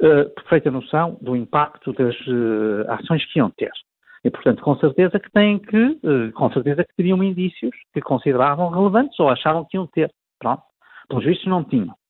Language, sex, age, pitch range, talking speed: Portuguese, male, 50-69, 130-195 Hz, 185 wpm